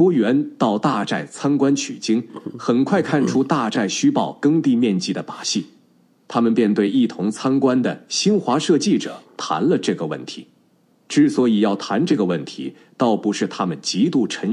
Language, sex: Chinese, male